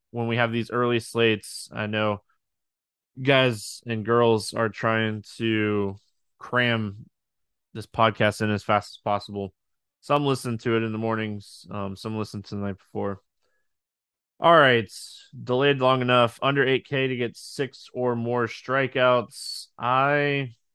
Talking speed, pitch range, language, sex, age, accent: 145 wpm, 105-130 Hz, English, male, 20-39, American